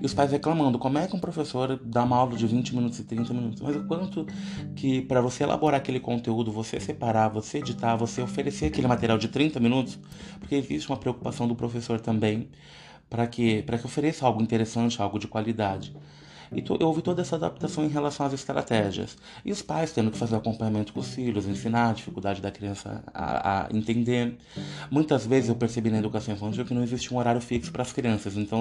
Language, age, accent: Portuguese, 20-39, Brazilian